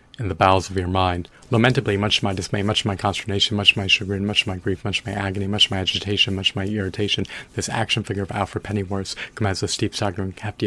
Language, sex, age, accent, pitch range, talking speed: English, male, 30-49, American, 95-105 Hz, 260 wpm